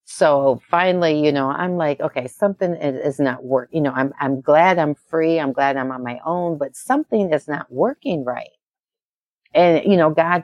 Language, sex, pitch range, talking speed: English, female, 140-175 Hz, 195 wpm